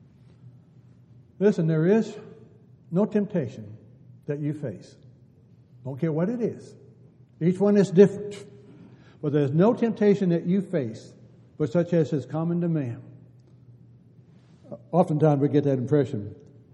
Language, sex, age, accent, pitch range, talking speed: English, male, 60-79, American, 130-175 Hz, 130 wpm